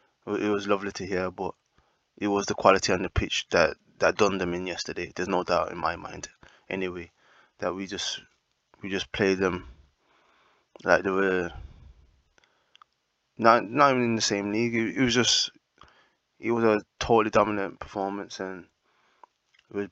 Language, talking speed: English, 170 wpm